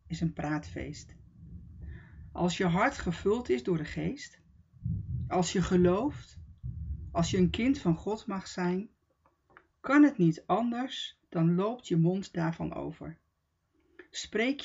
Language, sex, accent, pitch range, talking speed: Dutch, female, Dutch, 125-205 Hz, 135 wpm